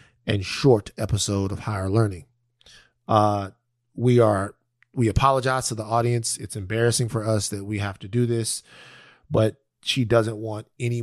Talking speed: 160 wpm